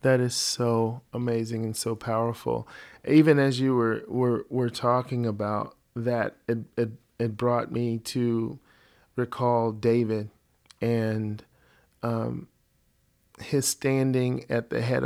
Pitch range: 115-130 Hz